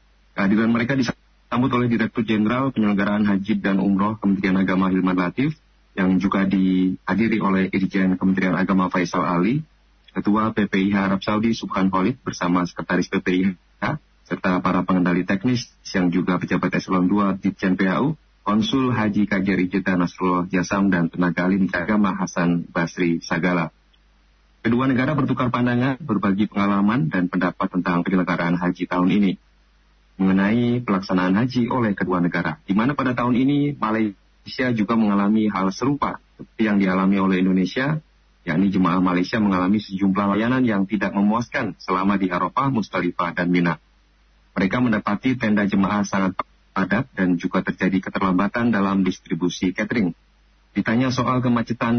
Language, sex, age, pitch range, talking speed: Indonesian, male, 30-49, 90-110 Hz, 135 wpm